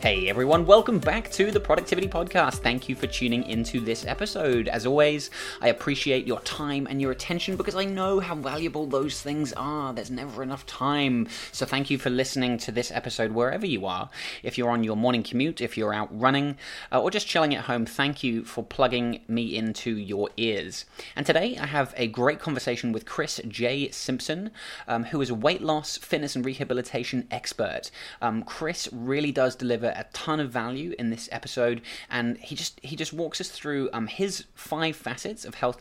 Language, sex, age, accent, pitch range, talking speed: English, male, 20-39, British, 115-145 Hz, 200 wpm